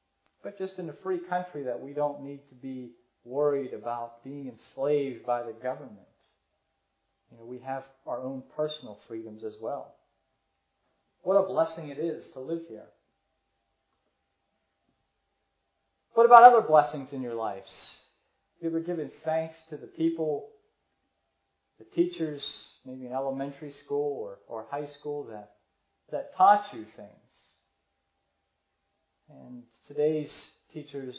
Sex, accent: male, American